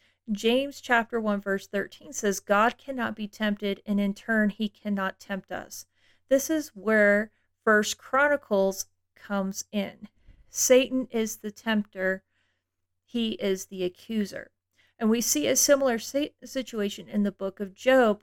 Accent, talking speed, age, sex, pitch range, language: American, 140 wpm, 40-59, female, 190-225 Hz, English